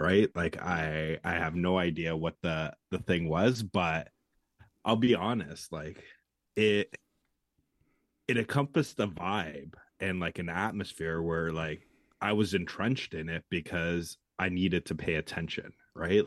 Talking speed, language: 150 wpm, English